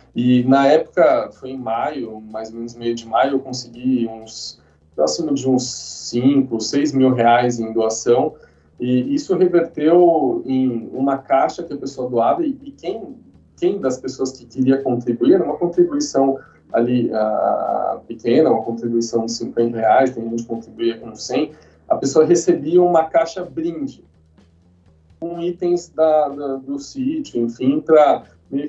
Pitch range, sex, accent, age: 120-160 Hz, male, Brazilian, 20-39